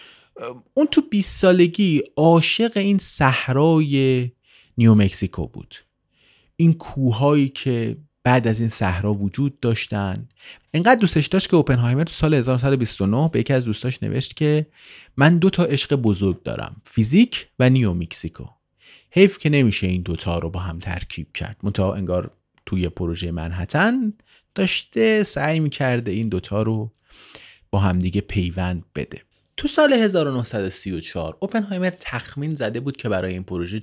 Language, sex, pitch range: Persian, male, 100-155 Hz